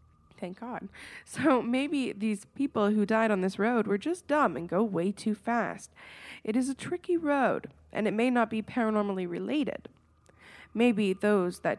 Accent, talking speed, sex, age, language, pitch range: American, 175 wpm, female, 20-39, English, 195-250 Hz